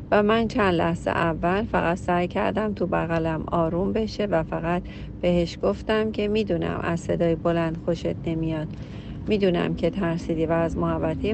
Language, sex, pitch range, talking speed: Persian, female, 170-220 Hz, 155 wpm